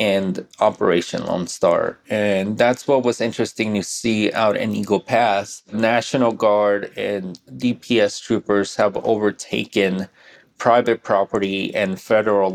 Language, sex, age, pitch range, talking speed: English, male, 20-39, 100-115 Hz, 125 wpm